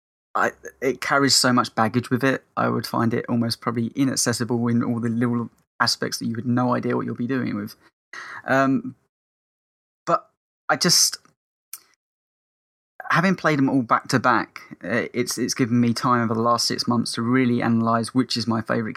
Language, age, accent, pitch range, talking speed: English, 20-39, British, 115-130 Hz, 185 wpm